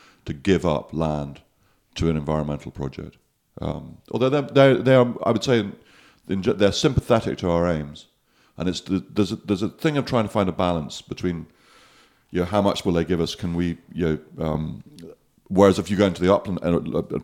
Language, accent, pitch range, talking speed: English, British, 75-100 Hz, 195 wpm